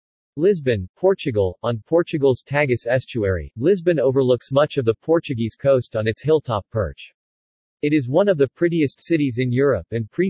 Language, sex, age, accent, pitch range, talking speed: English, male, 50-69, American, 115-150 Hz, 165 wpm